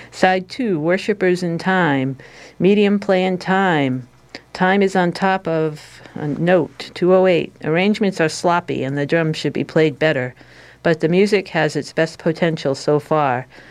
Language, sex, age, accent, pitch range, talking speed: English, female, 50-69, American, 140-180 Hz, 160 wpm